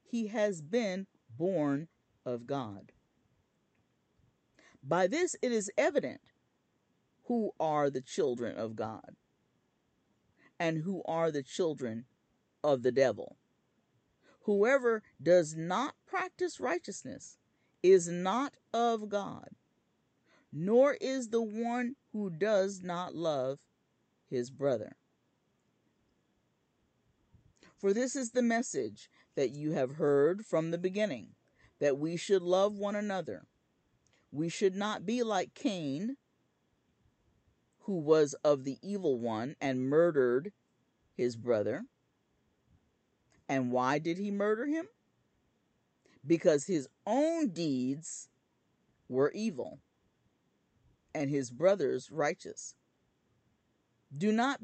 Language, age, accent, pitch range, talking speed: English, 50-69, American, 140-225 Hz, 105 wpm